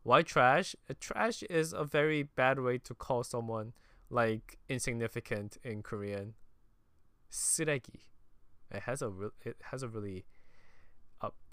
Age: 20-39